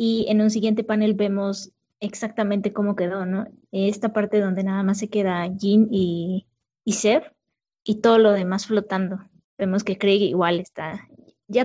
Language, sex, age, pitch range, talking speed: Spanish, female, 20-39, 195-235 Hz, 165 wpm